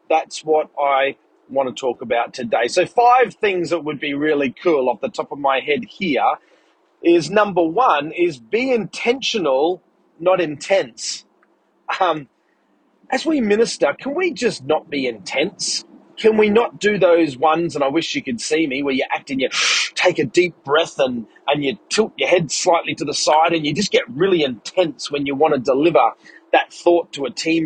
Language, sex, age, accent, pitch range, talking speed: English, male, 30-49, Australian, 145-220 Hz, 195 wpm